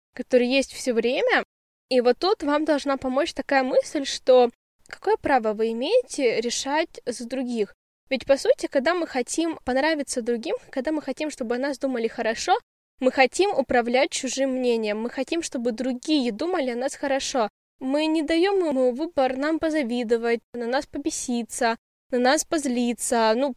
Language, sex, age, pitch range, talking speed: Russian, female, 10-29, 245-305 Hz, 160 wpm